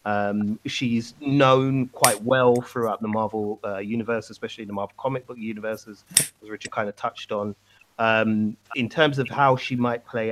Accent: British